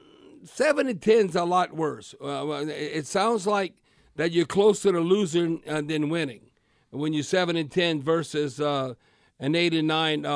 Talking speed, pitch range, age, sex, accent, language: 170 wpm, 155-180 Hz, 50-69, male, American, English